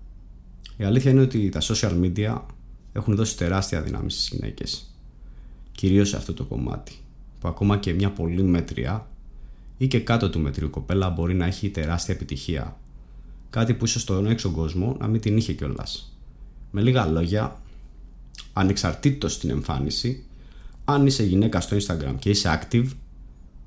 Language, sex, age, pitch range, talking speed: Greek, male, 20-39, 80-115 Hz, 150 wpm